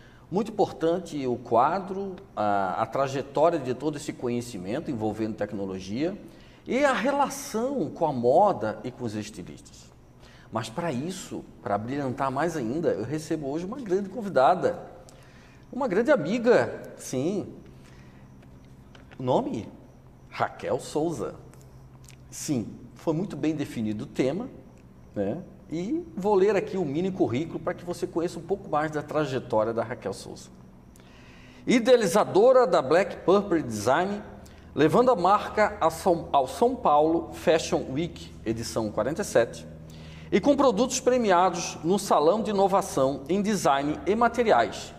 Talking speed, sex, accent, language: 130 wpm, male, Brazilian, Portuguese